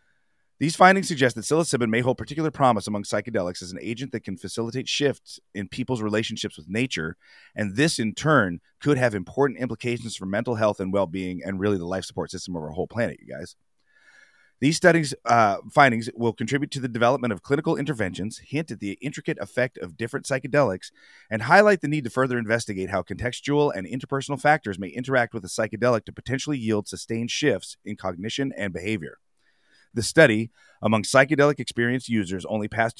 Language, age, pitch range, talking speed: English, 30-49, 95-130 Hz, 185 wpm